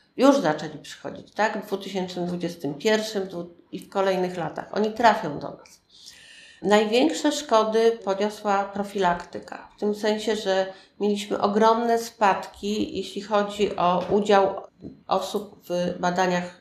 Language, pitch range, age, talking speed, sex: Polish, 185-215 Hz, 50-69, 115 wpm, female